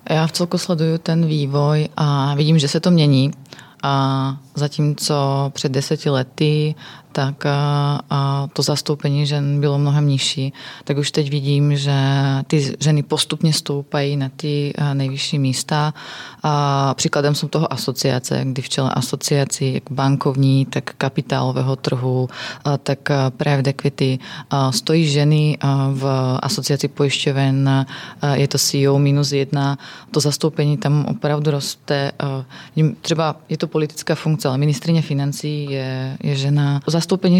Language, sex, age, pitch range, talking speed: Czech, female, 20-39, 135-150 Hz, 135 wpm